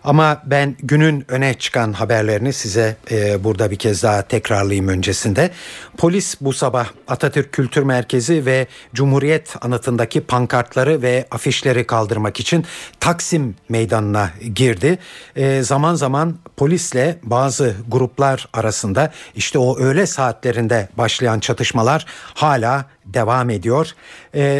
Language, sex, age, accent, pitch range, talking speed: Turkish, male, 60-79, native, 115-145 Hz, 115 wpm